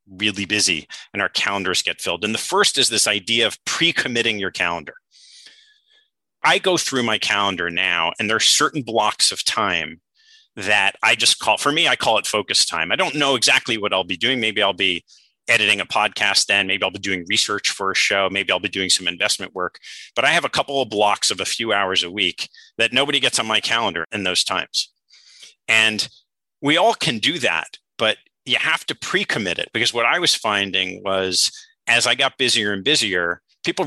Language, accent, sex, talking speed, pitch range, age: English, American, male, 210 wpm, 100-135 Hz, 30-49